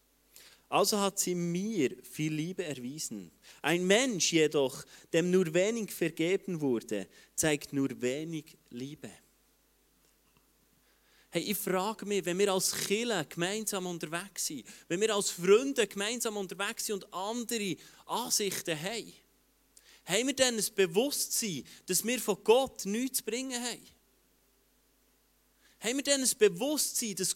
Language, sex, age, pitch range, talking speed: German, male, 30-49, 175-230 Hz, 130 wpm